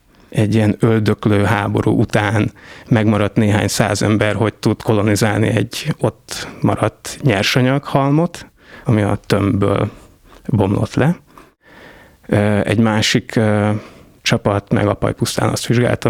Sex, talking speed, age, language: male, 105 wpm, 30-49, Hungarian